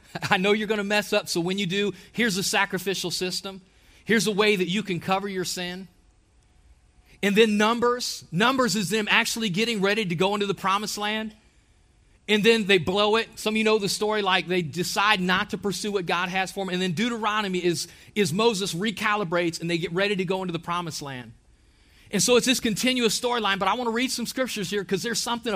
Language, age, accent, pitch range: English, 40-59, American, 180-225 Hz